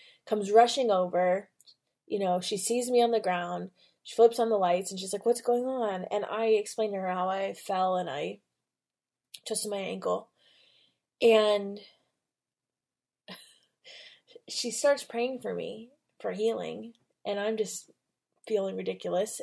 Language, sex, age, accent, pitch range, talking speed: English, female, 20-39, American, 200-270 Hz, 150 wpm